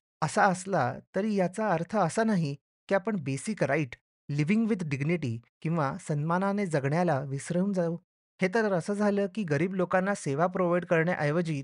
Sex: male